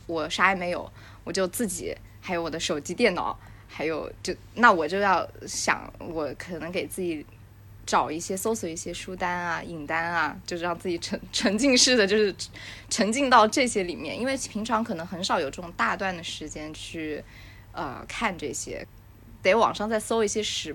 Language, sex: Chinese, female